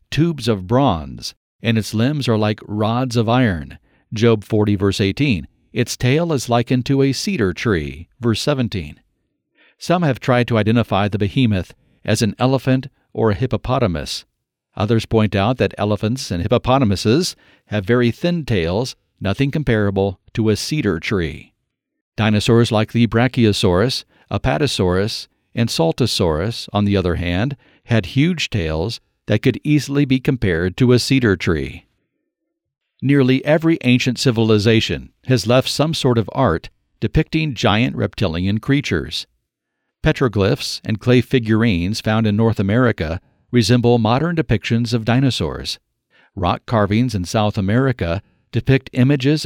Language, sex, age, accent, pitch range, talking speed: English, male, 50-69, American, 105-130 Hz, 135 wpm